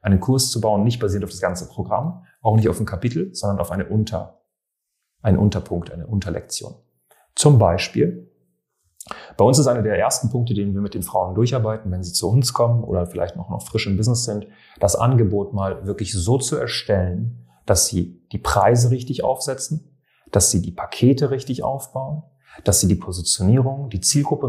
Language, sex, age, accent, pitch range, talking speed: German, male, 30-49, German, 95-125 Hz, 185 wpm